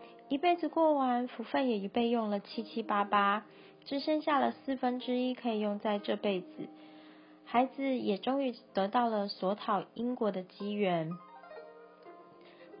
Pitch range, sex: 205-255 Hz, female